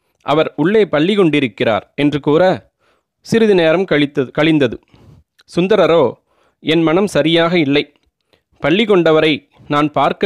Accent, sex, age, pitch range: native, male, 30-49, 140-175 Hz